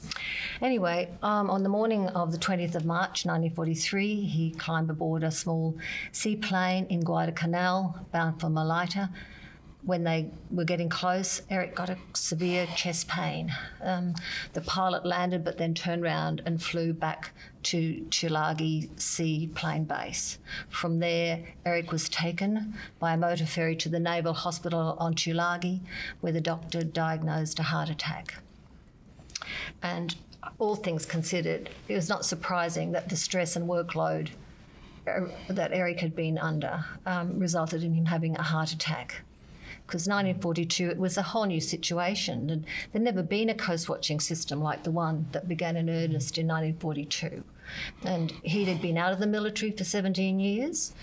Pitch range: 160-185 Hz